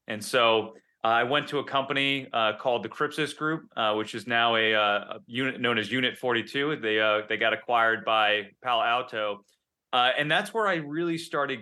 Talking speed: 200 wpm